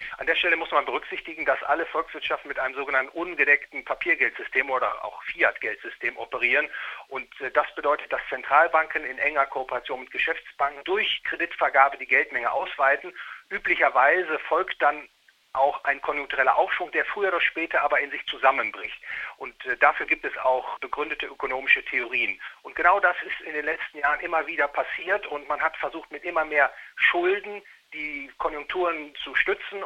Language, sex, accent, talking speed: German, male, German, 160 wpm